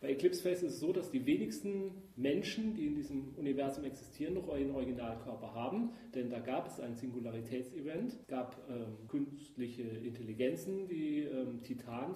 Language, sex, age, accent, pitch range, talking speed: German, male, 40-59, German, 125-180 Hz, 165 wpm